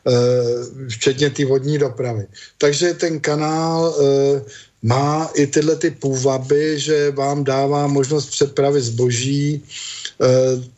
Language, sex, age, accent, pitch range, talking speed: Czech, male, 50-69, native, 125-150 Hz, 110 wpm